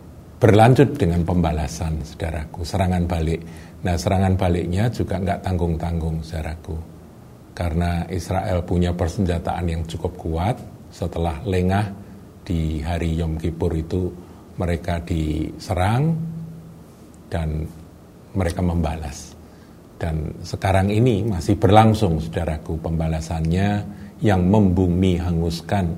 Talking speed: 95 wpm